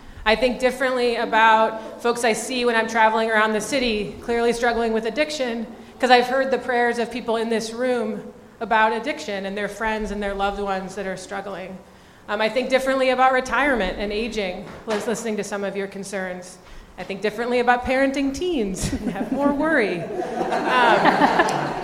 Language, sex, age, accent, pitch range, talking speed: English, female, 30-49, American, 200-240 Hz, 175 wpm